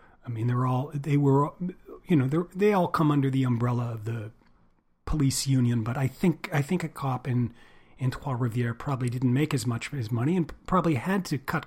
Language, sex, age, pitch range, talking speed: English, male, 40-59, 120-155 Hz, 220 wpm